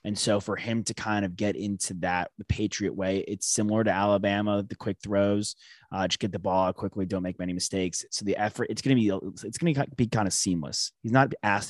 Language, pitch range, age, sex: English, 90-115 Hz, 30-49, male